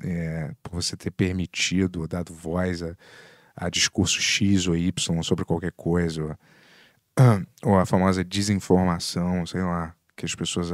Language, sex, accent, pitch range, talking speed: Portuguese, male, Brazilian, 90-130 Hz, 145 wpm